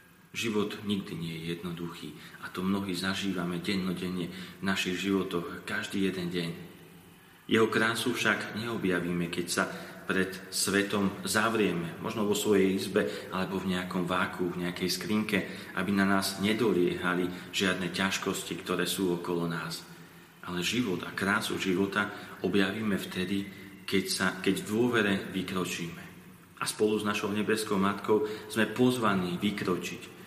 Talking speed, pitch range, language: 135 wpm, 90-110 Hz, Slovak